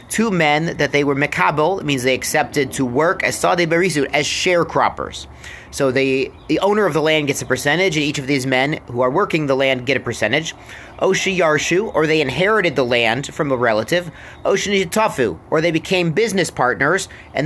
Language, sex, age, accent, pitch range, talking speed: English, male, 30-49, American, 130-175 Hz, 190 wpm